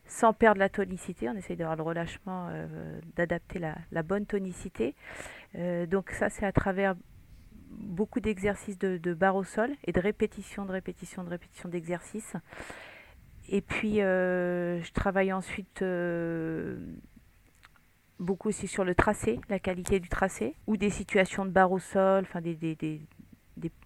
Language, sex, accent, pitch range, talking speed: French, female, French, 175-205 Hz, 160 wpm